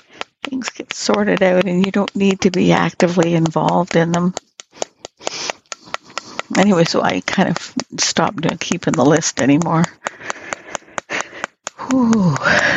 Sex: female